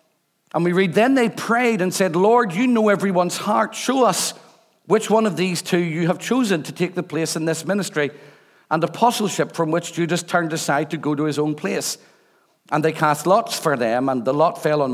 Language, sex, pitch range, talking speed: English, male, 145-180 Hz, 215 wpm